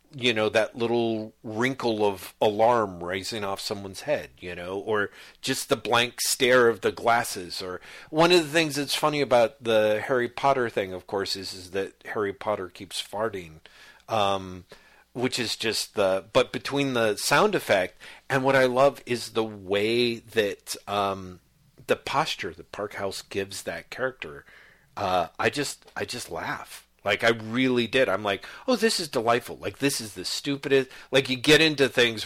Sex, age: male, 50-69